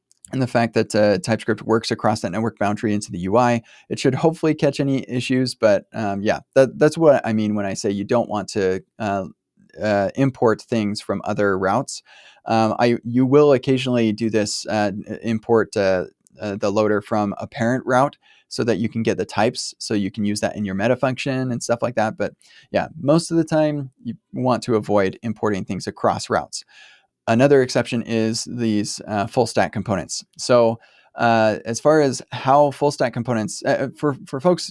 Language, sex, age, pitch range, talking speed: English, male, 20-39, 105-130 Hz, 195 wpm